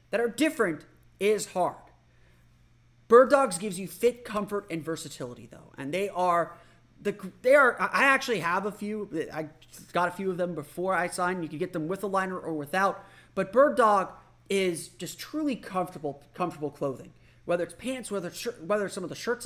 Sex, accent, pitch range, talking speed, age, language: male, American, 160-225 Hz, 195 wpm, 30-49, English